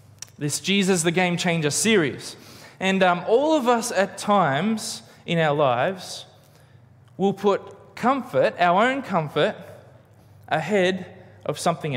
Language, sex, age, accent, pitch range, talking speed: English, male, 20-39, Australian, 125-185 Hz, 125 wpm